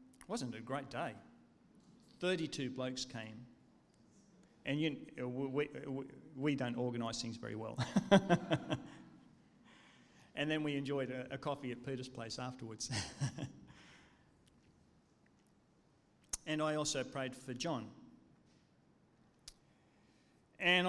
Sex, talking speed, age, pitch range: male, 100 wpm, 40-59, 135-175 Hz